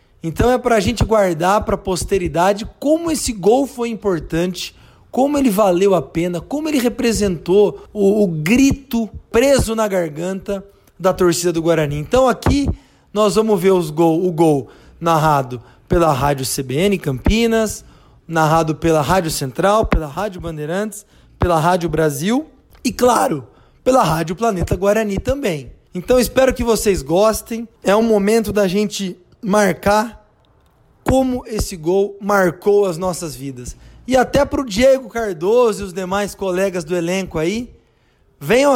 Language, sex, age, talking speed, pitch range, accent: Portuguese, male, 20-39, 145 wpm, 170-225 Hz, Brazilian